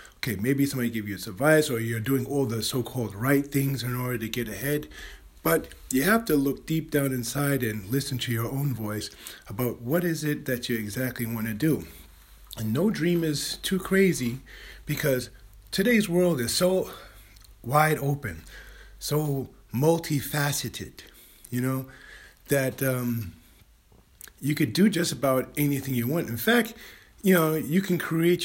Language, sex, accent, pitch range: English, male, American, 120-155 Hz